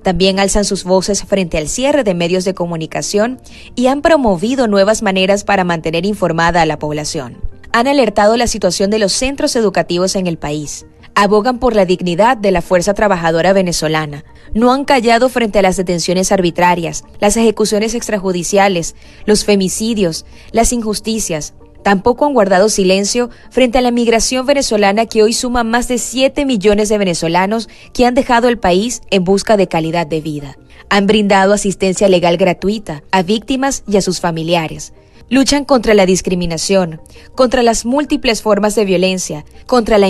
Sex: female